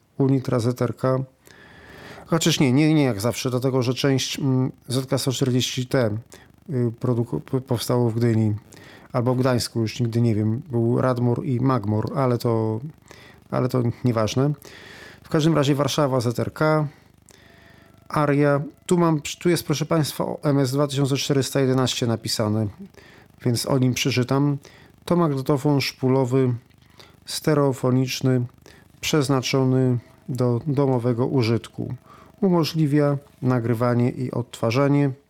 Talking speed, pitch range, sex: 105 wpm, 125-145 Hz, male